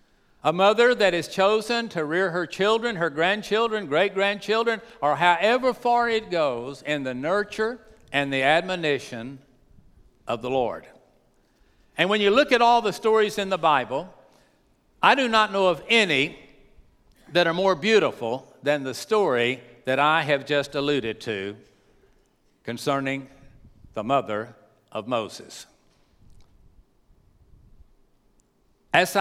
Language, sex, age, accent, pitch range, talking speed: English, male, 60-79, American, 125-195 Hz, 125 wpm